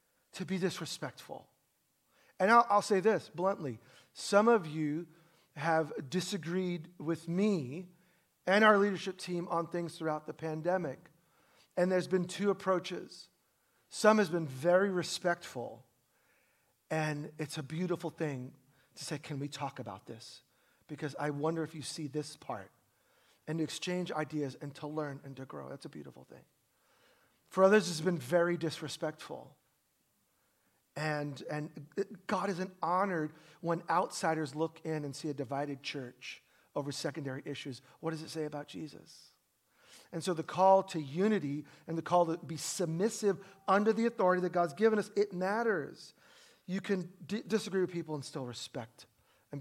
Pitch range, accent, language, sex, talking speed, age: 150-190 Hz, American, English, male, 155 wpm, 40-59